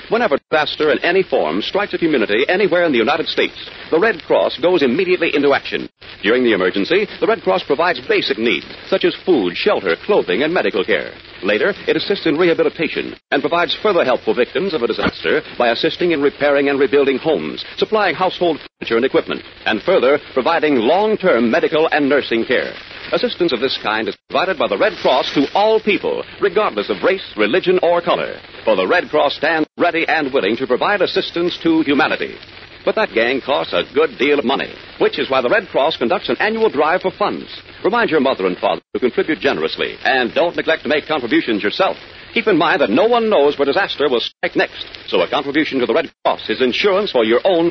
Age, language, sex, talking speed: 60-79, English, male, 205 wpm